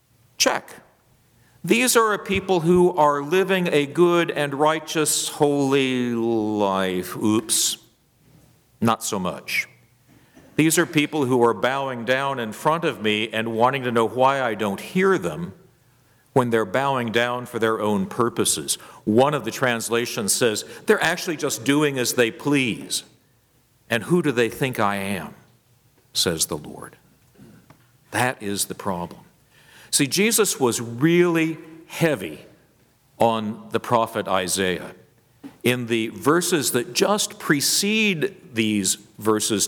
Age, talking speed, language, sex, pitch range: 50-69, 135 wpm, English, male, 115-165 Hz